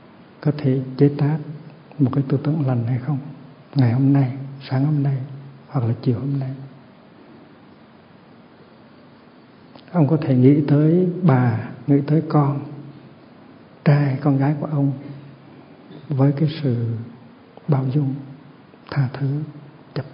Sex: male